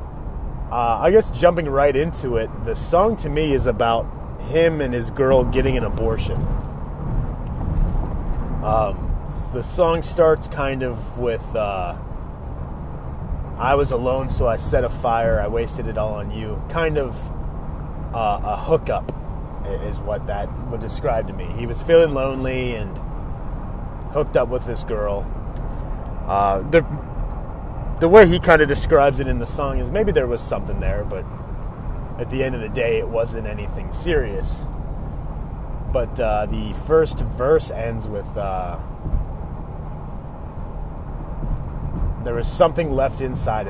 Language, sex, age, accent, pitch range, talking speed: English, male, 30-49, American, 90-130 Hz, 145 wpm